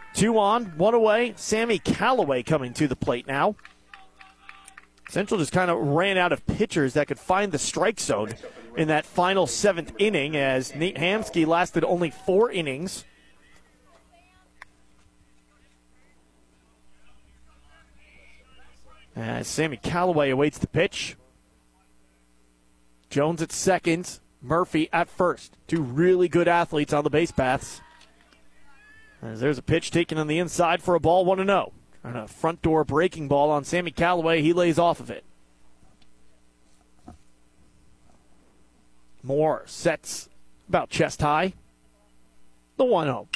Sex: male